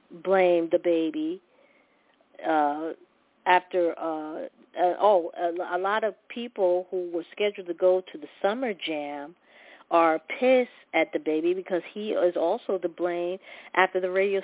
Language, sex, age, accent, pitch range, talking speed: English, female, 40-59, American, 175-210 Hz, 150 wpm